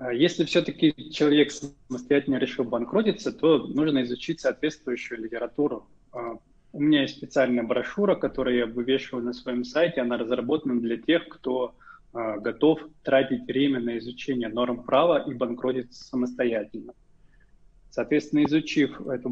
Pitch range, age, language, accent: 120-145 Hz, 20-39, Russian, native